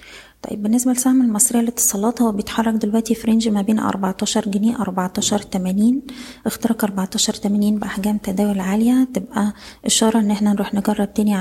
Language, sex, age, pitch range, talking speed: Arabic, female, 20-39, 195-220 Hz, 130 wpm